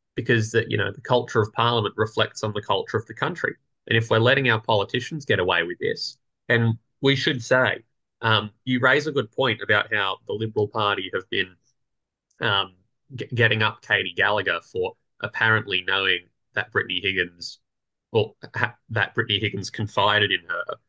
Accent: Australian